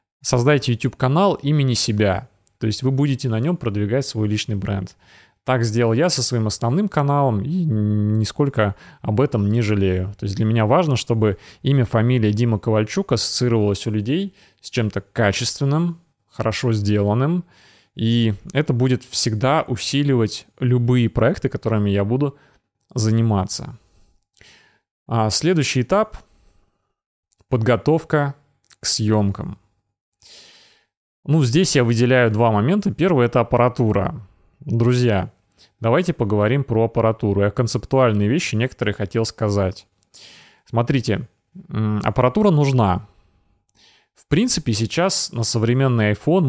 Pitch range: 105-135 Hz